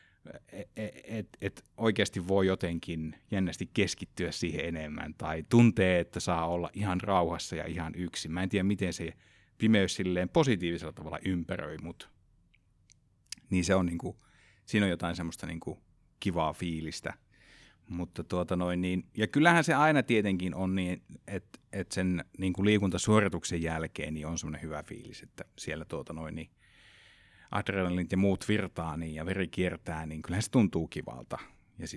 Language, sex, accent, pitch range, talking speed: Finnish, male, native, 85-100 Hz, 155 wpm